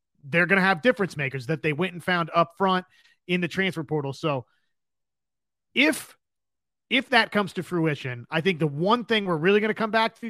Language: English